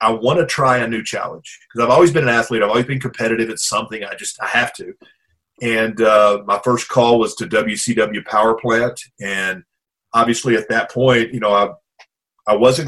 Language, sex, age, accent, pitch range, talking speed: English, male, 30-49, American, 105-130 Hz, 205 wpm